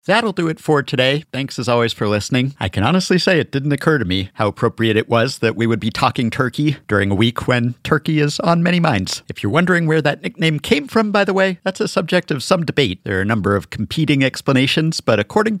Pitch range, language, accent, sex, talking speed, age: 105-160 Hz, English, American, male, 245 wpm, 50-69